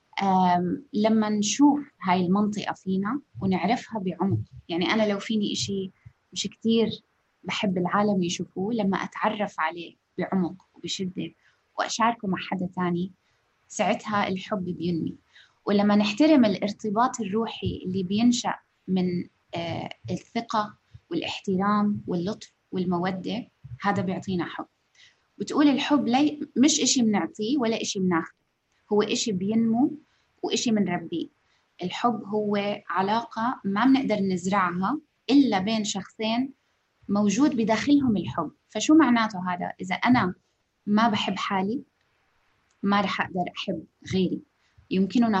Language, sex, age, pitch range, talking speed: Arabic, female, 20-39, 185-225 Hz, 115 wpm